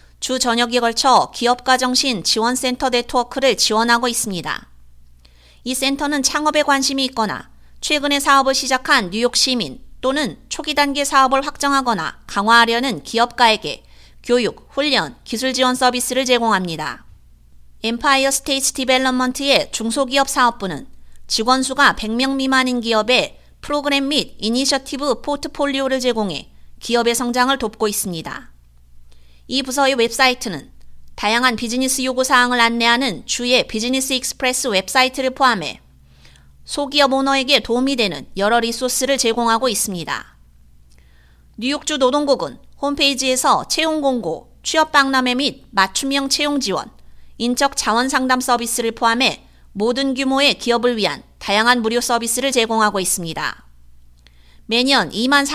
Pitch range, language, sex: 225-270 Hz, Korean, female